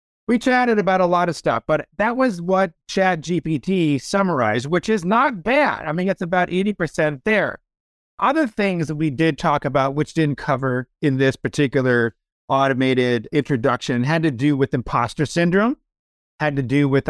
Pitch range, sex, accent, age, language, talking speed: 140-175 Hz, male, American, 50-69, English, 170 wpm